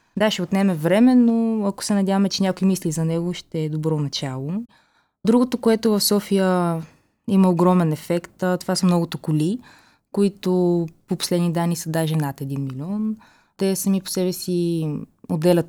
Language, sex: English, female